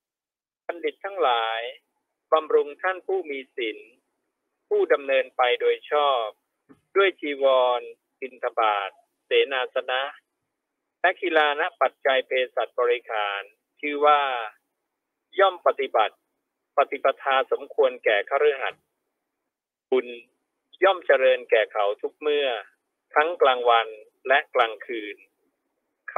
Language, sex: Thai, male